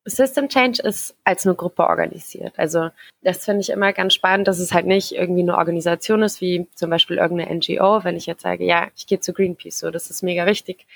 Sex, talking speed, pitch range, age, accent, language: female, 225 wpm, 165-200 Hz, 20-39, German, German